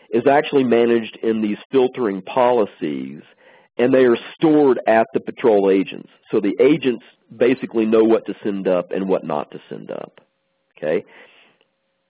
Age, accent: 50-69, American